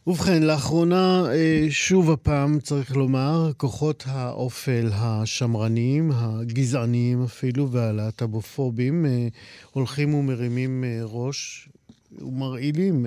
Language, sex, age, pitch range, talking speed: Hebrew, male, 50-69, 115-140 Hz, 75 wpm